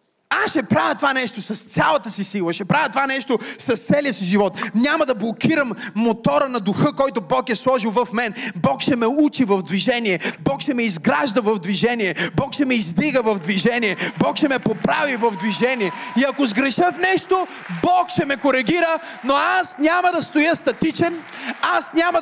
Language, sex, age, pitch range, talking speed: Bulgarian, male, 30-49, 225-325 Hz, 190 wpm